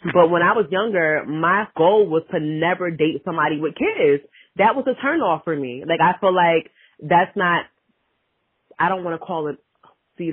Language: English